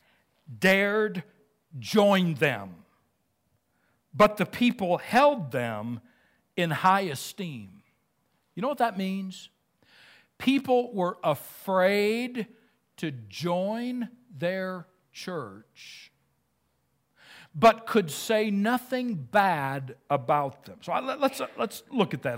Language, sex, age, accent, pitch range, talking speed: English, male, 60-79, American, 160-215 Hz, 100 wpm